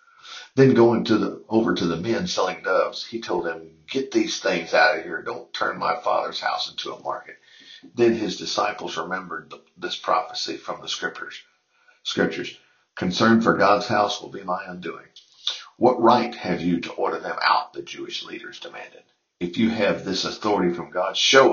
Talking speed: 185 wpm